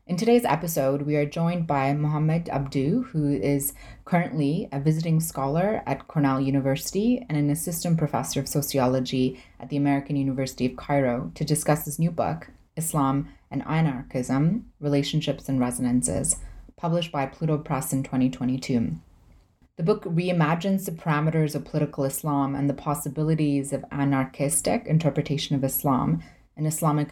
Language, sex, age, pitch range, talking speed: English, female, 20-39, 135-150 Hz, 145 wpm